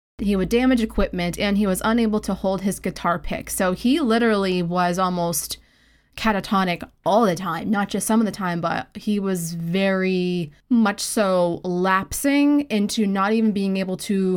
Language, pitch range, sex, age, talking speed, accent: English, 180-220 Hz, female, 20-39, 170 wpm, American